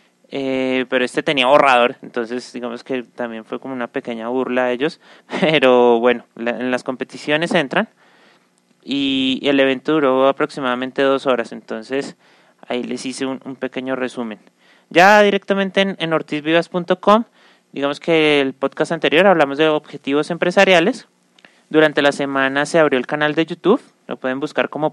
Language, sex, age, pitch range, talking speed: Spanish, male, 30-49, 120-165 Hz, 155 wpm